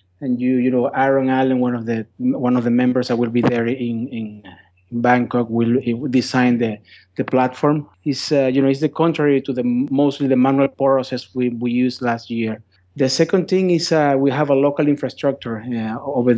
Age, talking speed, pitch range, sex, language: 30-49, 210 wpm, 120-140 Hz, male, English